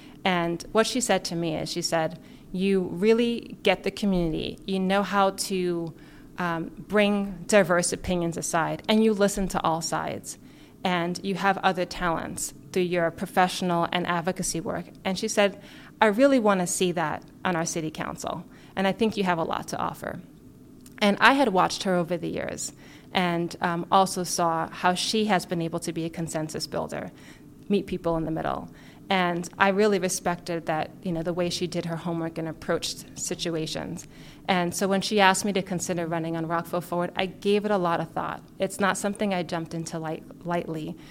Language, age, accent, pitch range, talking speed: English, 30-49, American, 170-195 Hz, 190 wpm